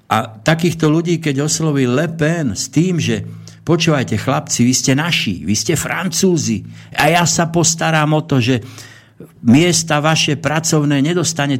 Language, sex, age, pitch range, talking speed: Slovak, male, 60-79, 130-160 Hz, 150 wpm